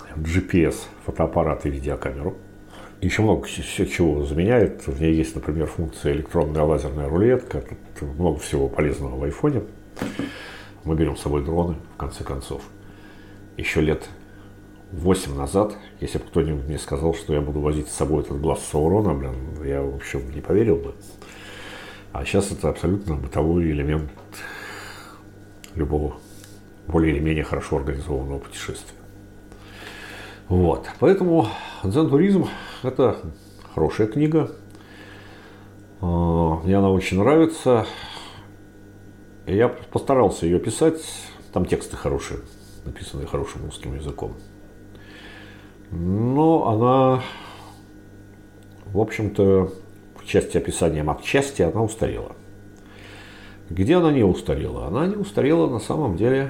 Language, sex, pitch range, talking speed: Russian, male, 80-105 Hz, 115 wpm